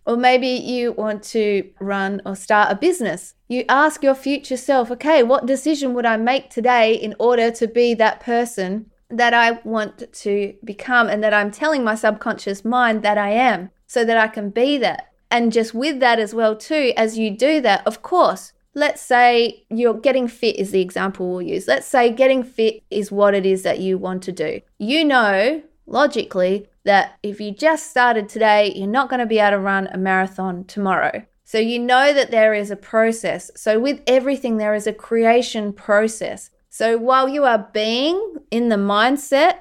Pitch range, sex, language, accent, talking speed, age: 205-250 Hz, female, English, Australian, 195 wpm, 20-39